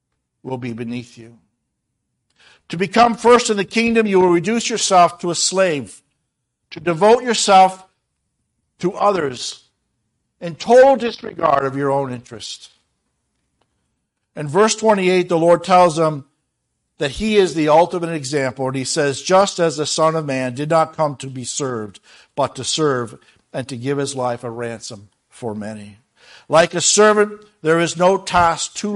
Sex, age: male, 60-79